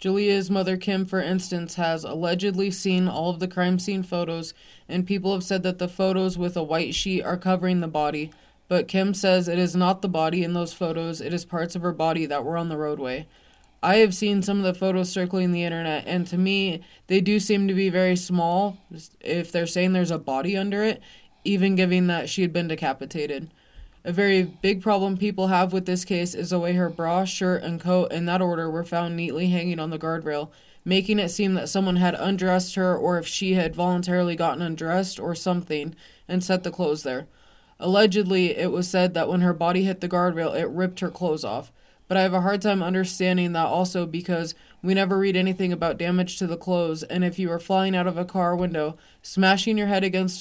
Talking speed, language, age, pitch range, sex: 220 wpm, English, 20-39, 170-190 Hz, female